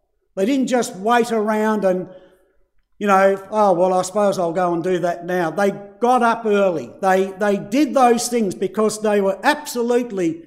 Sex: male